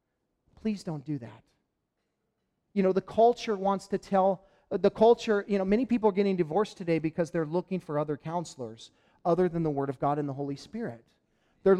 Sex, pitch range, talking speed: male, 165-220 Hz, 195 wpm